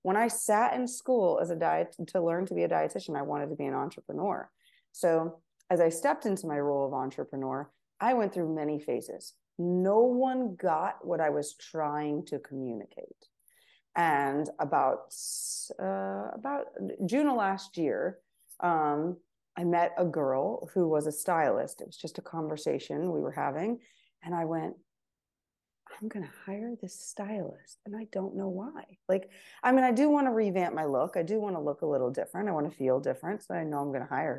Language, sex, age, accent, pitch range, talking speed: English, female, 30-49, American, 150-205 Hz, 195 wpm